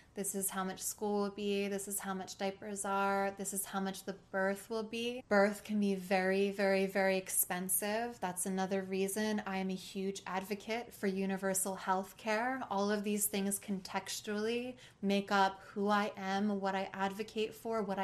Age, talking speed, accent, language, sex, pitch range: 20-39, 185 wpm, American, English, female, 195-215 Hz